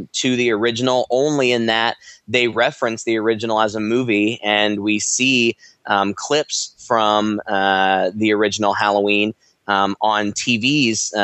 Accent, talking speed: American, 145 wpm